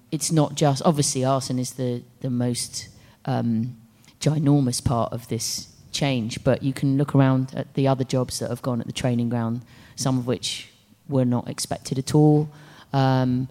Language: English